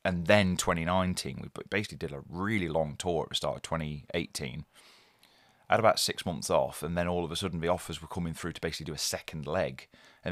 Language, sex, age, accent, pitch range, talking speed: English, male, 30-49, British, 80-105 Hz, 225 wpm